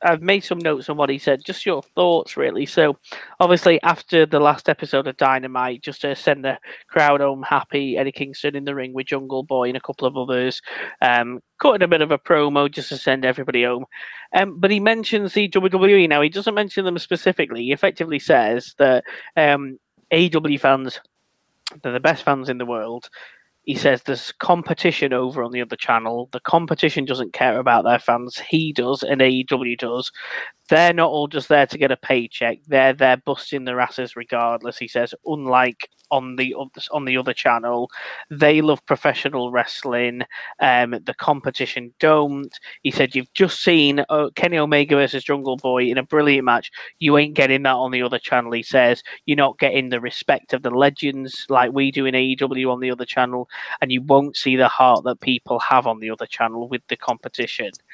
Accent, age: British, 20-39